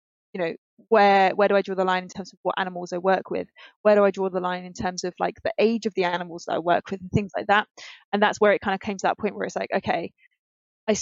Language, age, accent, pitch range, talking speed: English, 20-39, British, 180-210 Hz, 300 wpm